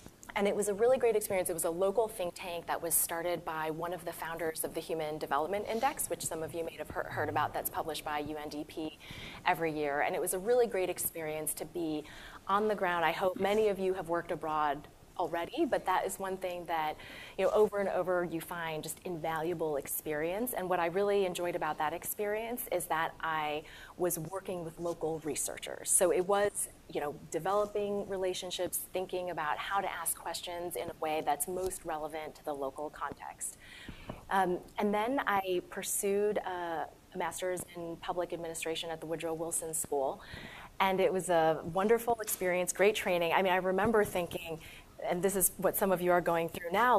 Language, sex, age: English, female, 30-49